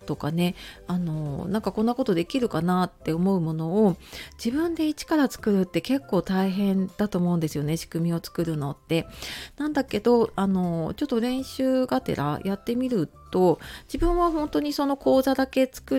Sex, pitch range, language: female, 165-220 Hz, Japanese